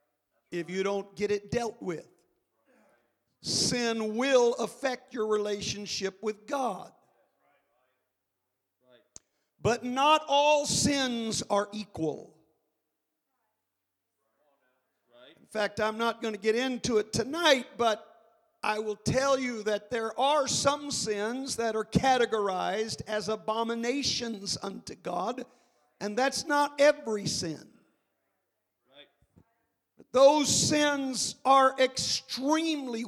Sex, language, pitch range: male, English, 195-250 Hz